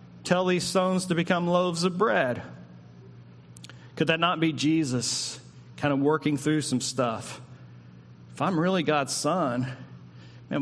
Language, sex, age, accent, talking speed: English, male, 40-59, American, 140 wpm